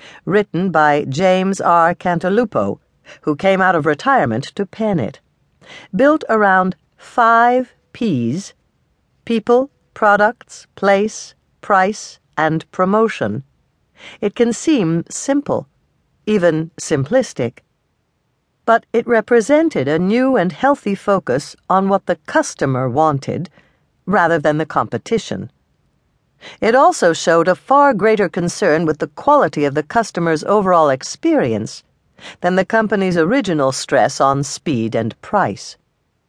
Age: 60-79